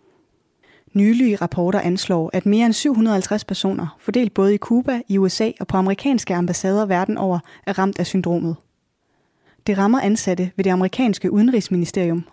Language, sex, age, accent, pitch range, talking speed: Danish, female, 20-39, native, 185-230 Hz, 150 wpm